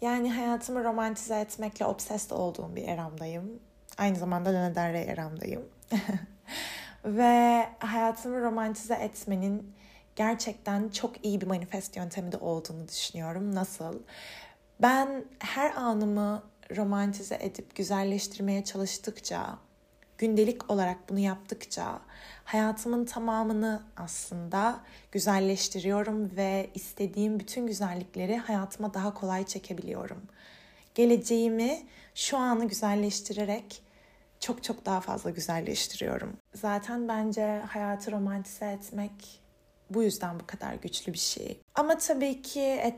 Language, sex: Turkish, female